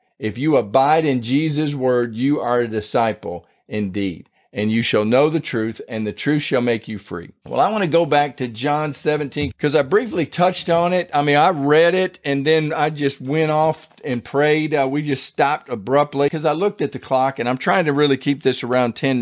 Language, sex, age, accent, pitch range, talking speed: English, male, 40-59, American, 120-150 Hz, 225 wpm